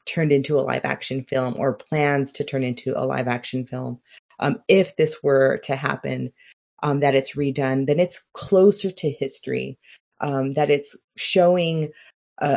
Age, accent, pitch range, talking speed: 30-49, American, 135-155 Hz, 165 wpm